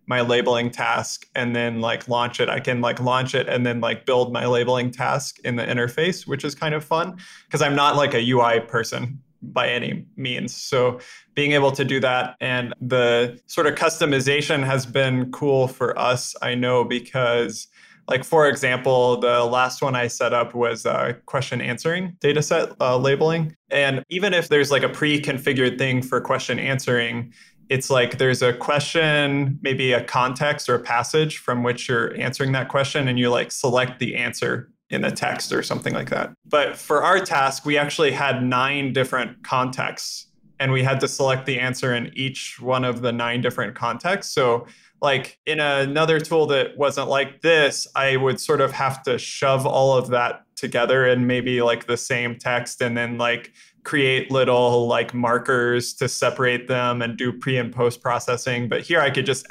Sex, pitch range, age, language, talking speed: male, 120-140 Hz, 20-39, English, 190 wpm